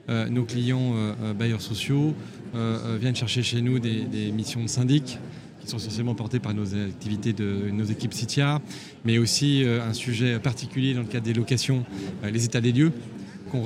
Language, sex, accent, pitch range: French, male, French, 115-130 Hz